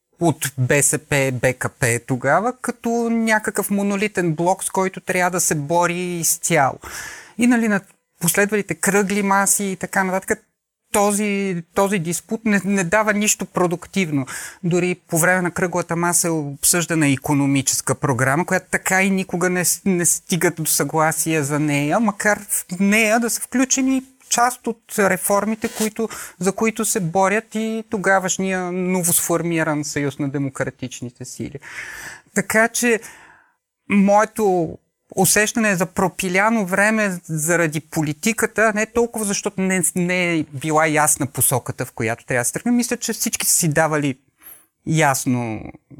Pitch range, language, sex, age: 150-205 Hz, Bulgarian, male, 30-49